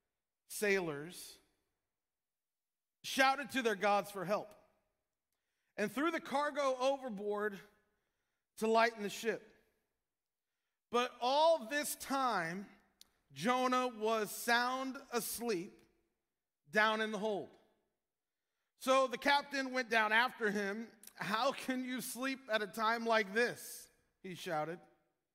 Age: 40-59